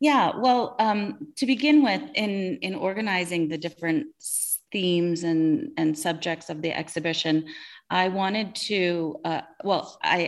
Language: English